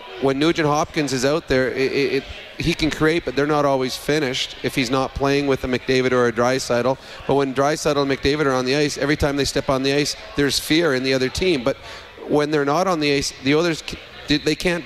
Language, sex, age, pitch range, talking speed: English, male, 30-49, 135-150 Hz, 230 wpm